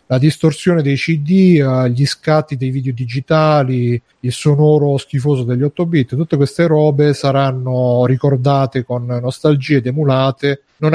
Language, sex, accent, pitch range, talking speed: Italian, male, native, 130-150 Hz, 135 wpm